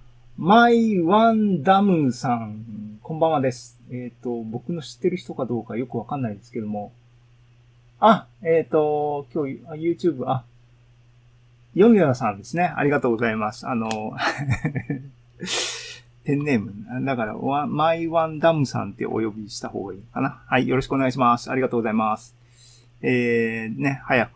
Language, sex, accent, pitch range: Japanese, male, native, 120-155 Hz